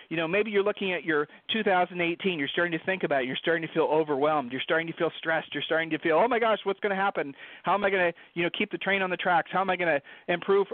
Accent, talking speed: American, 300 wpm